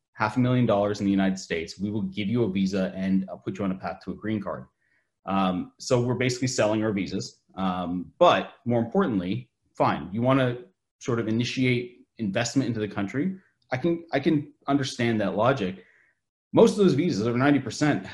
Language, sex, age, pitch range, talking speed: English, male, 30-49, 100-125 Hz, 195 wpm